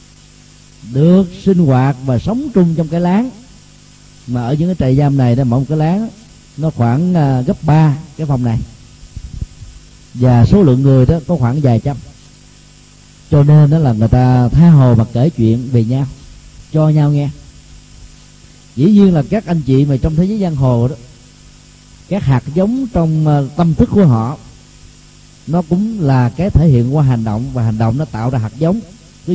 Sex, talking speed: male, 190 wpm